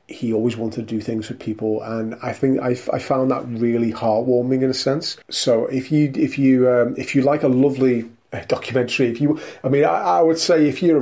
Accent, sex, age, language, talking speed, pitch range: British, male, 30-49, English, 235 wpm, 110-130 Hz